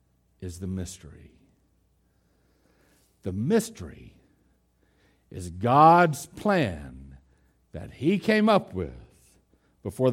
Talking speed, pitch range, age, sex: 85 wpm, 85-130 Hz, 60-79, male